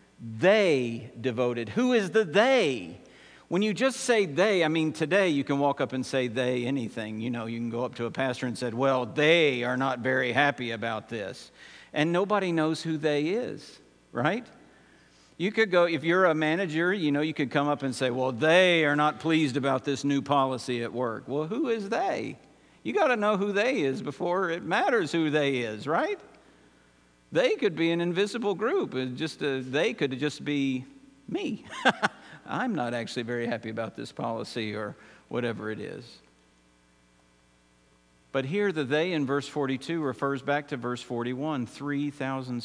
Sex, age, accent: male, 50-69, American